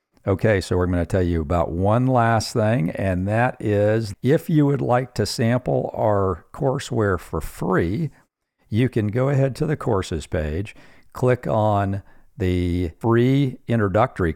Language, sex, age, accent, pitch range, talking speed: English, male, 50-69, American, 95-120 Hz, 155 wpm